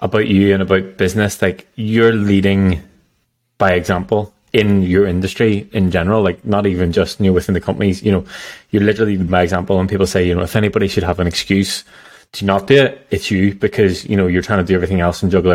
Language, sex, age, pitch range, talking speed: English, male, 20-39, 90-105 Hz, 220 wpm